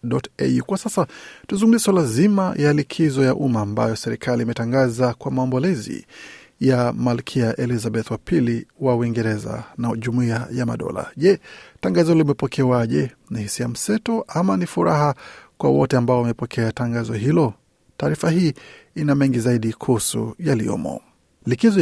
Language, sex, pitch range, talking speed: Swahili, male, 120-160 Hz, 140 wpm